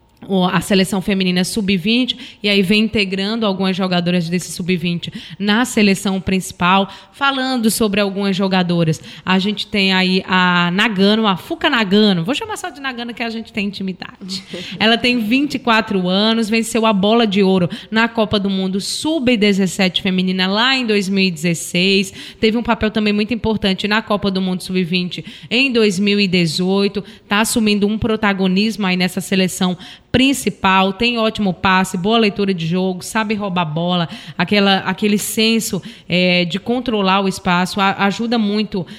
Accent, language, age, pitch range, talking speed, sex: Brazilian, Portuguese, 20-39, 185-220 Hz, 150 wpm, female